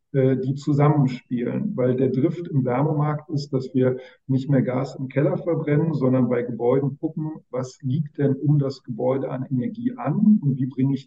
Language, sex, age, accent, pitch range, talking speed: German, male, 40-59, German, 130-150 Hz, 180 wpm